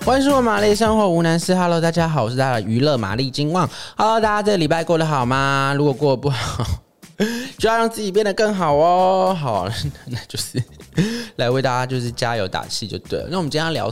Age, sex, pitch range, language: 20-39, male, 110-165 Hz, Chinese